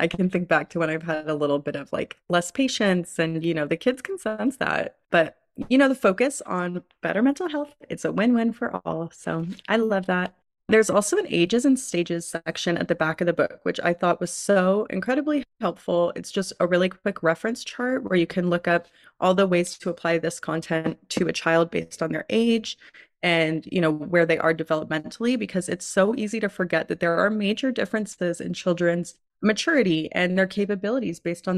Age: 20-39